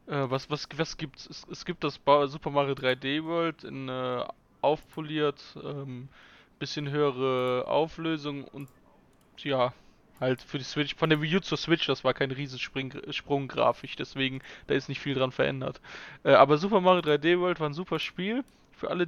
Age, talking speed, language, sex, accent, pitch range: 20-39, 175 wpm, German, male, German, 140-170 Hz